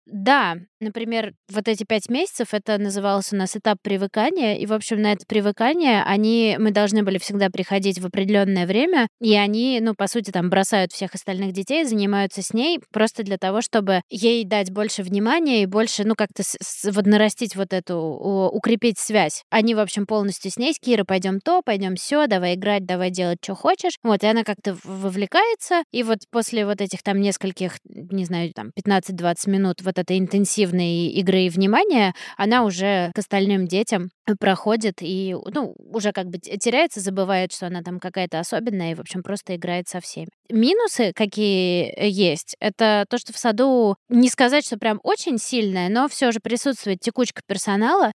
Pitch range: 190-230 Hz